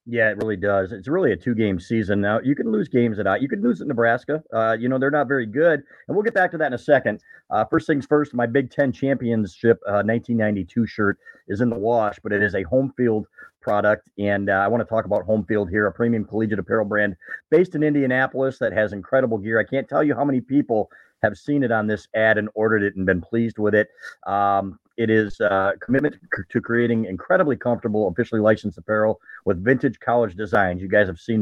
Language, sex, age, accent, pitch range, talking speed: English, male, 40-59, American, 100-125 Hz, 235 wpm